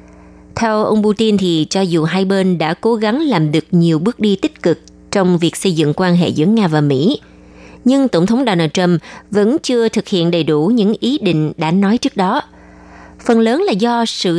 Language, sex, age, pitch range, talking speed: Vietnamese, female, 20-39, 160-220 Hz, 215 wpm